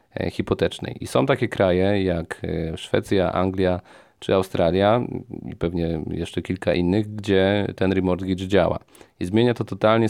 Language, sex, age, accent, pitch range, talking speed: Polish, male, 40-59, native, 90-105 Hz, 135 wpm